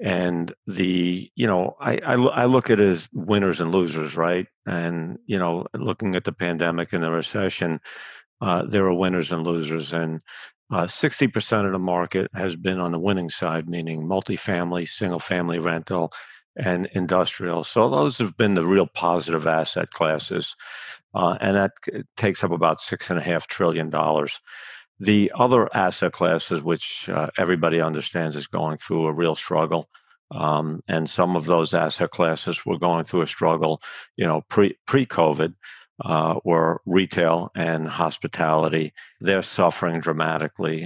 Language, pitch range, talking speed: English, 80-90 Hz, 150 wpm